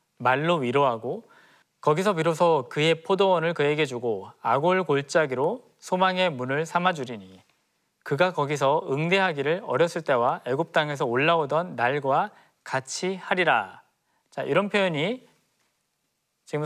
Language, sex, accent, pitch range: Korean, male, native, 150-215 Hz